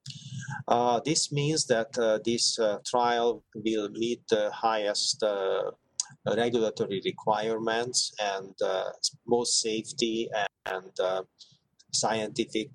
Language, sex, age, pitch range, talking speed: English, male, 30-49, 110-170 Hz, 105 wpm